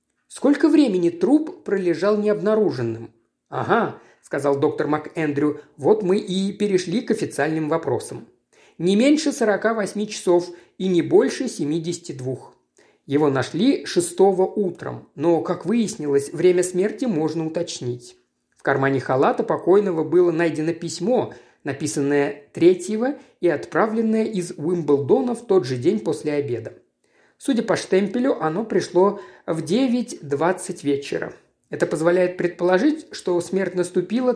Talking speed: 125 wpm